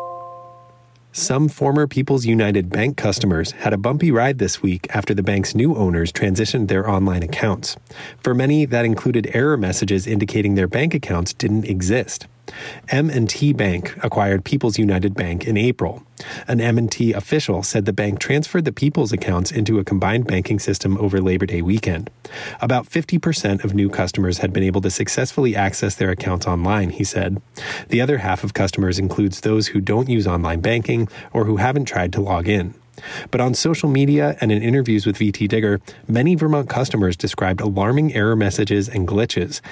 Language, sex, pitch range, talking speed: English, male, 95-125 Hz, 170 wpm